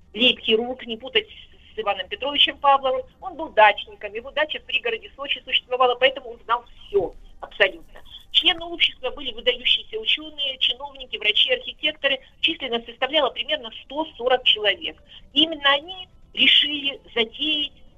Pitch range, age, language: 225-300 Hz, 40-59, Russian